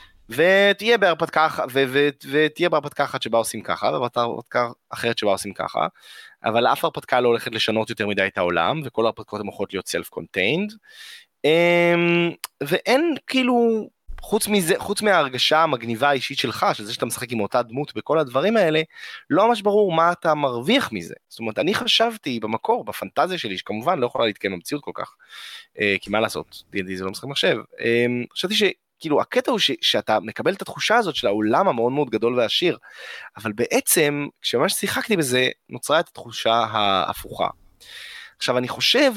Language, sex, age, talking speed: Hebrew, male, 20-39, 160 wpm